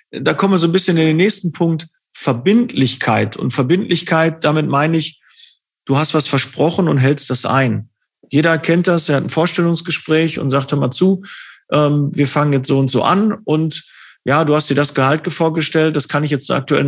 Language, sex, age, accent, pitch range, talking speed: German, male, 40-59, German, 140-170 Hz, 200 wpm